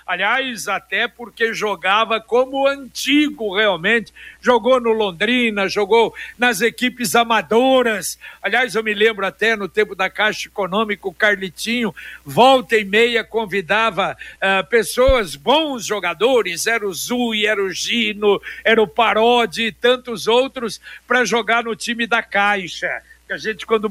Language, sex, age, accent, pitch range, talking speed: Portuguese, male, 60-79, Brazilian, 200-235 Hz, 140 wpm